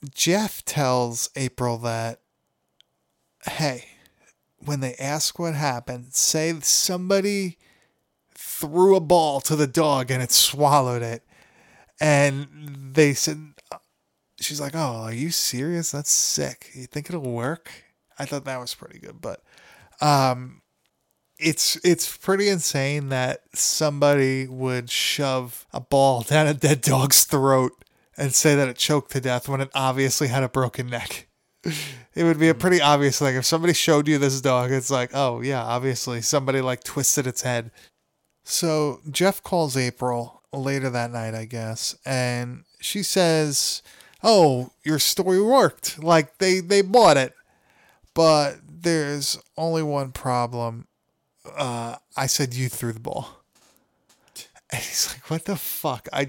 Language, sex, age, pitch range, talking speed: English, male, 20-39, 125-160 Hz, 145 wpm